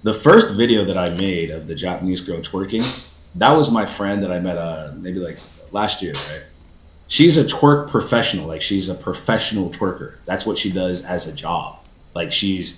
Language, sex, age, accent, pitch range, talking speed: English, male, 30-49, American, 105-155 Hz, 195 wpm